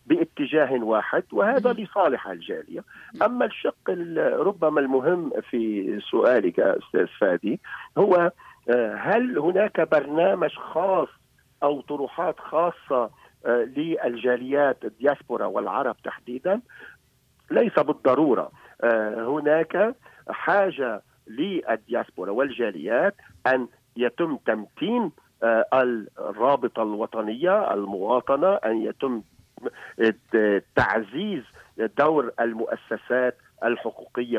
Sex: male